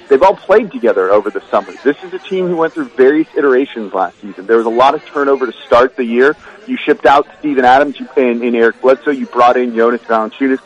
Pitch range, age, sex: 120-155 Hz, 30-49, male